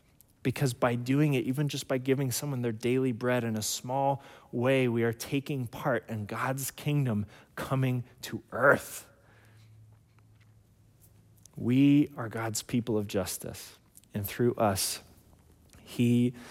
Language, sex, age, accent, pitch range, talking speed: English, male, 30-49, American, 105-130 Hz, 130 wpm